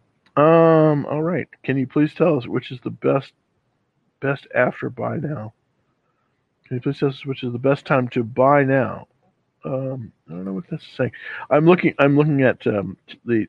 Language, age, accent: English, 50-69, American